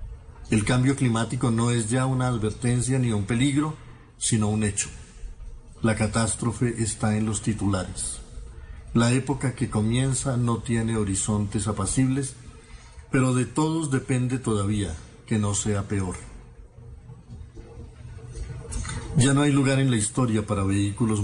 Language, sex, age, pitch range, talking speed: Spanish, male, 50-69, 105-130 Hz, 130 wpm